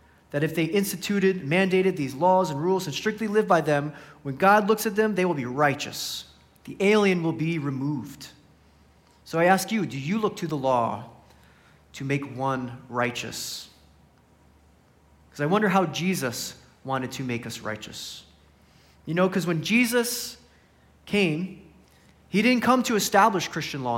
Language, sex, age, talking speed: English, male, 30-49, 165 wpm